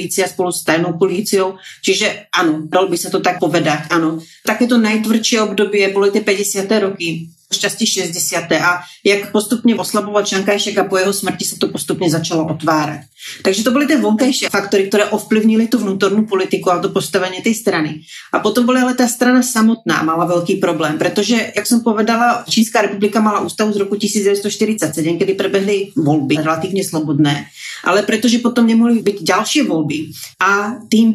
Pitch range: 180-220 Hz